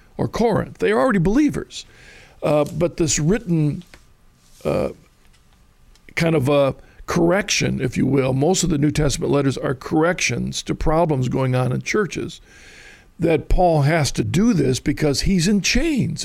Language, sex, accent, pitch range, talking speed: English, male, American, 140-170 Hz, 155 wpm